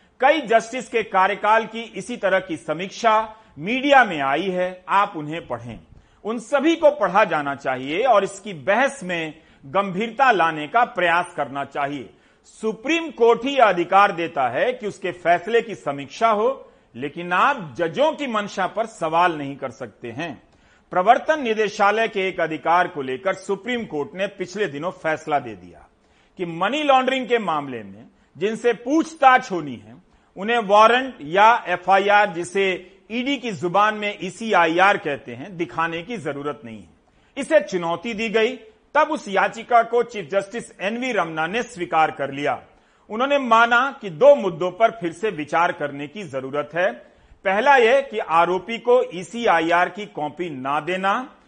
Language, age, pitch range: Hindi, 40-59, 165-230 Hz